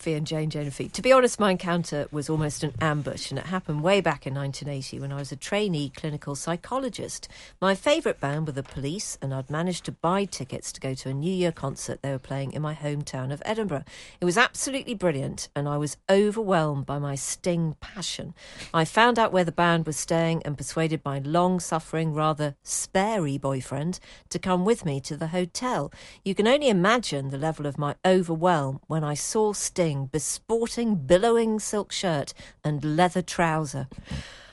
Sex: female